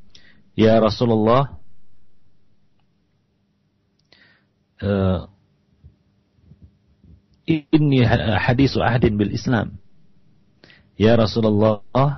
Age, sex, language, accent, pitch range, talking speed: 50-69, male, Indonesian, native, 100-120 Hz, 55 wpm